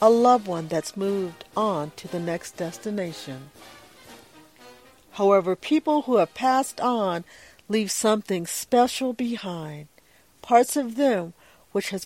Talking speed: 125 wpm